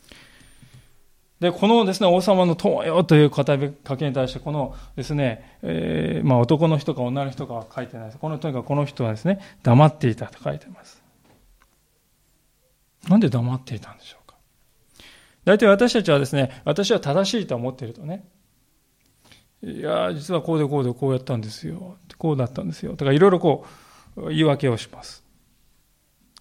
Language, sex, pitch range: Japanese, male, 125-185 Hz